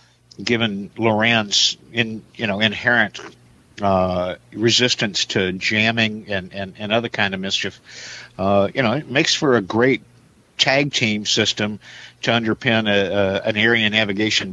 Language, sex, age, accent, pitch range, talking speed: English, male, 50-69, American, 100-120 Hz, 145 wpm